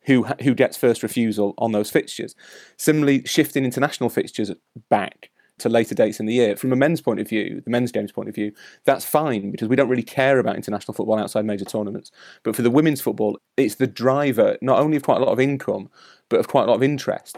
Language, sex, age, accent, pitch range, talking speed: English, male, 30-49, British, 110-130 Hz, 230 wpm